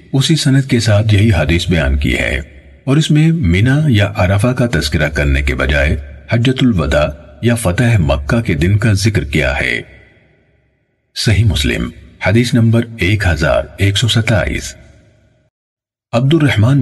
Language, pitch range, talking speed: Urdu, 80-125 Hz, 135 wpm